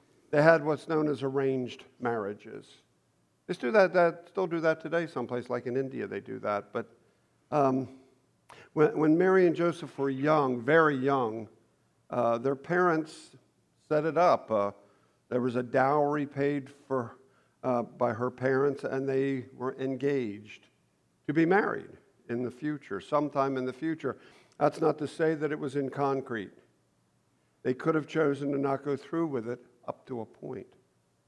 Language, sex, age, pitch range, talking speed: English, male, 50-69, 125-150 Hz, 170 wpm